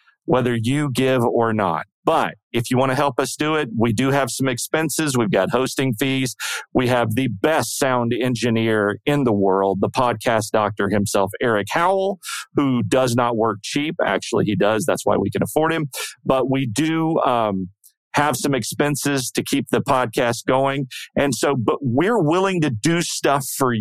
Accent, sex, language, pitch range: American, male, English, 120-150 Hz